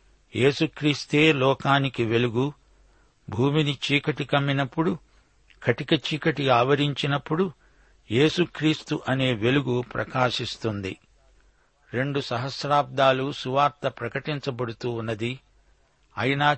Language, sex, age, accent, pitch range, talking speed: Telugu, male, 60-79, native, 120-145 Hz, 70 wpm